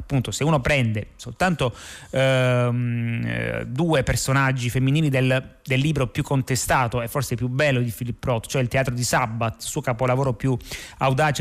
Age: 30-49